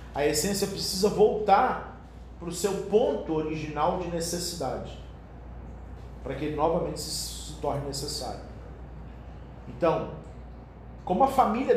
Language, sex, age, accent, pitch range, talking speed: Portuguese, male, 40-59, Brazilian, 110-175 Hz, 110 wpm